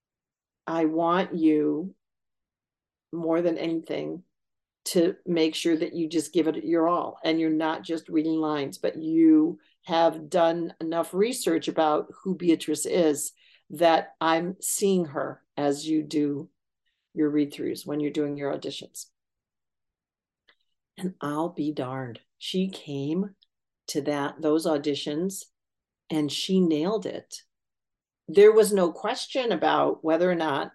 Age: 50-69